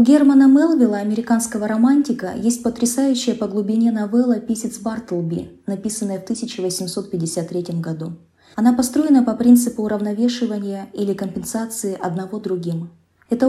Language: Russian